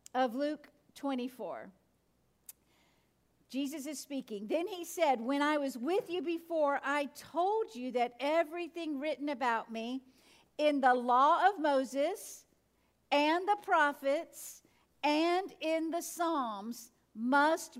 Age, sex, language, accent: 50-69, female, English, American